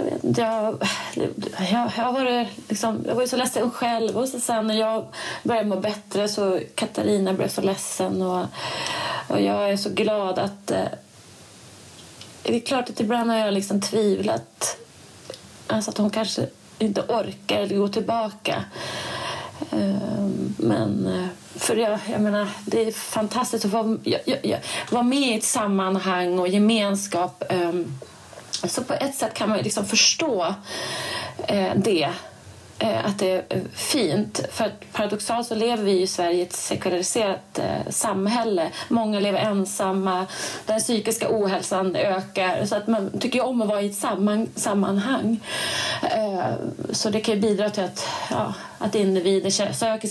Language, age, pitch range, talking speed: Swedish, 30-49, 190-225 Hz, 145 wpm